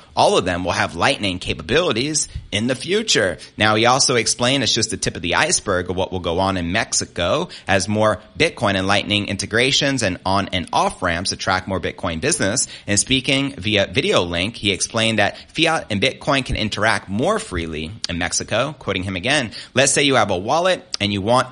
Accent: American